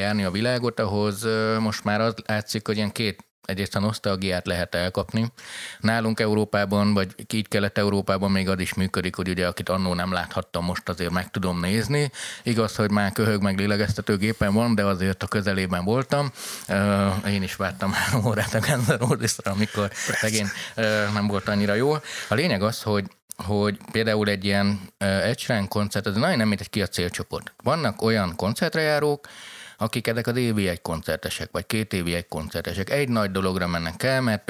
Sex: male